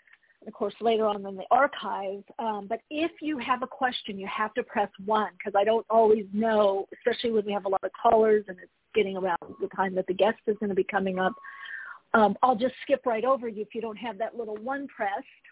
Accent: American